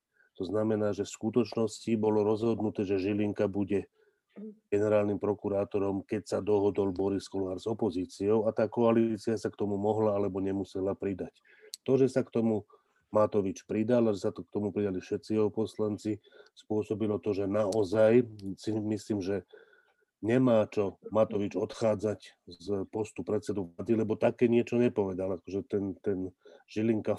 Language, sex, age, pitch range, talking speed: Slovak, male, 40-59, 100-110 Hz, 150 wpm